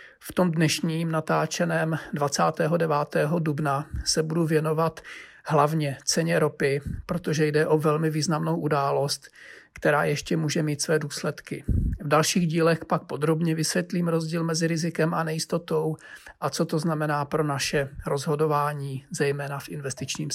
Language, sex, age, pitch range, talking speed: Czech, male, 40-59, 145-165 Hz, 135 wpm